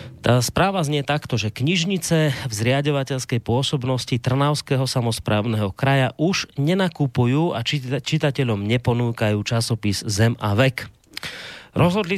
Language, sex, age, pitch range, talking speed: Slovak, male, 30-49, 115-140 Hz, 110 wpm